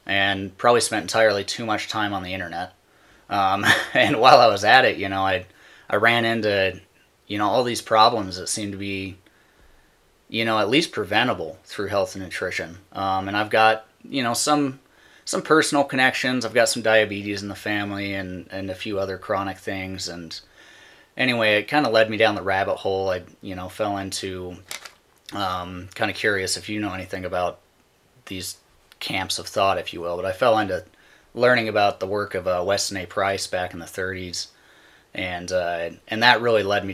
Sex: male